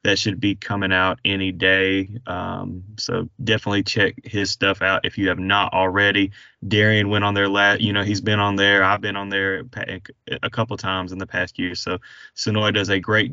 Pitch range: 100-120 Hz